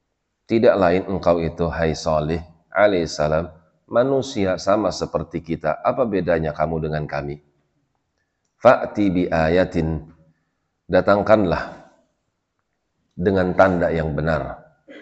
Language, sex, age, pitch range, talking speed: Indonesian, male, 40-59, 80-90 Hz, 95 wpm